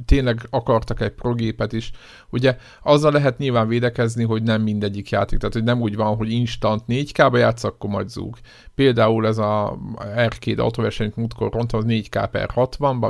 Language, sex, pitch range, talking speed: Hungarian, male, 105-120 Hz, 175 wpm